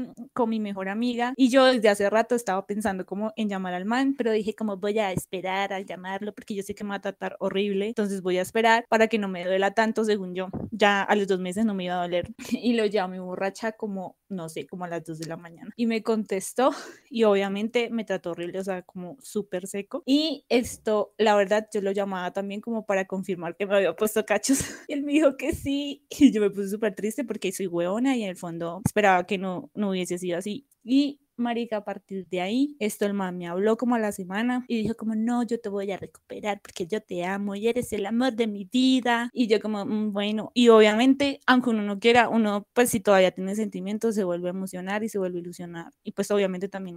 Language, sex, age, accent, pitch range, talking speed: Spanish, female, 20-39, Colombian, 195-235 Hz, 245 wpm